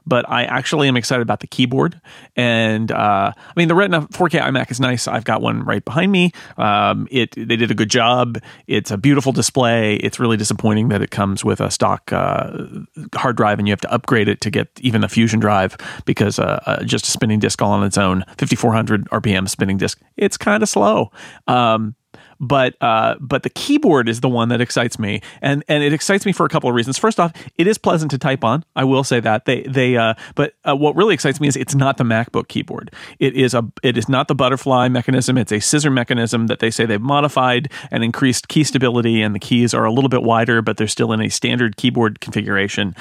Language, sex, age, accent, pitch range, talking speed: English, male, 40-59, American, 110-135 Hz, 230 wpm